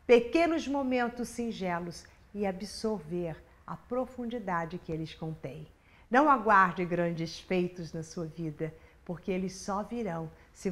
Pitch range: 180-275 Hz